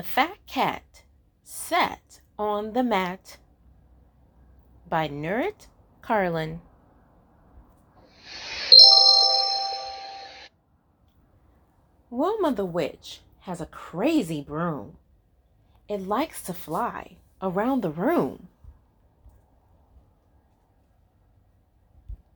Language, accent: English, American